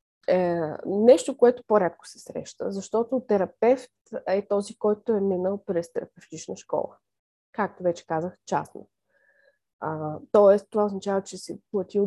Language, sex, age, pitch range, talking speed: Bulgarian, female, 20-39, 175-225 Hz, 130 wpm